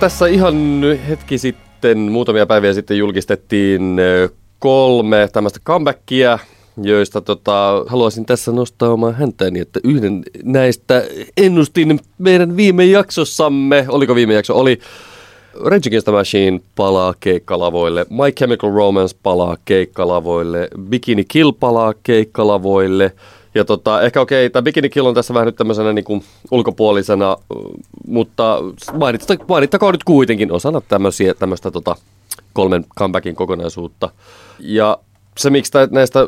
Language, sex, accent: Finnish, male, native